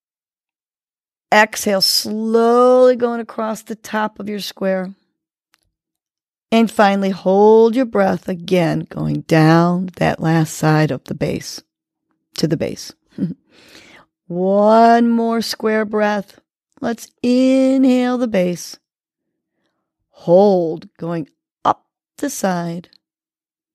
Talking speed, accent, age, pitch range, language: 100 wpm, American, 40-59, 165-220 Hz, English